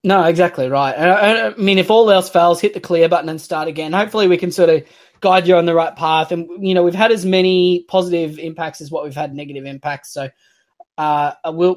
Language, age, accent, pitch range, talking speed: English, 20-39, Australian, 145-180 Hz, 230 wpm